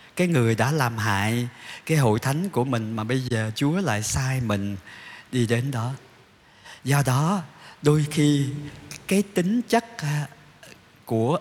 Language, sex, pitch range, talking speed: Vietnamese, male, 110-150 Hz, 145 wpm